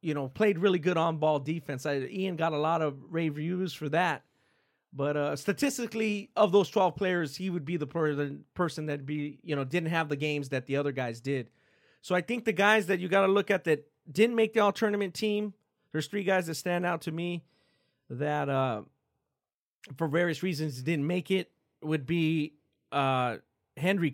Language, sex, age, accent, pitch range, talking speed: English, male, 30-49, American, 145-180 Hz, 200 wpm